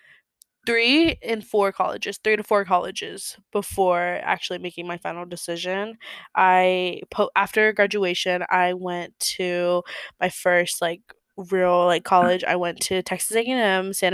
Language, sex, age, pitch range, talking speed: English, female, 20-39, 175-210 Hz, 140 wpm